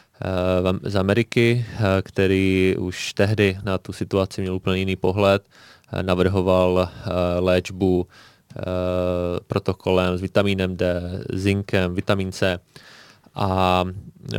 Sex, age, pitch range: male, 20-39, 95-105 Hz